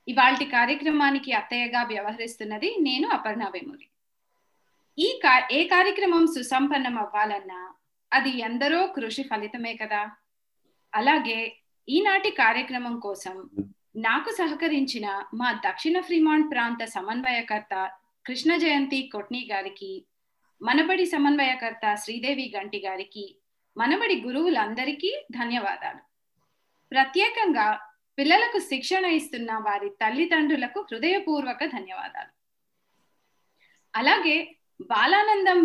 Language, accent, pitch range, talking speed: Telugu, native, 220-330 Hz, 85 wpm